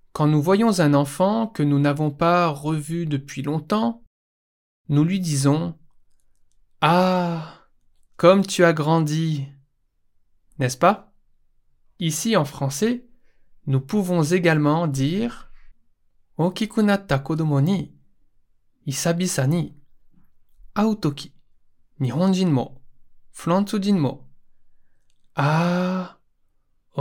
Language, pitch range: Japanese, 130-180 Hz